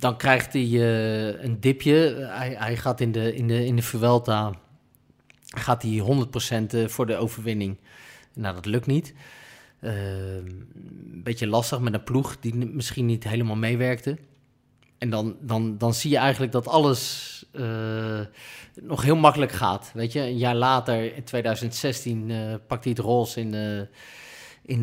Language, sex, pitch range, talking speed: Dutch, male, 110-135 Hz, 160 wpm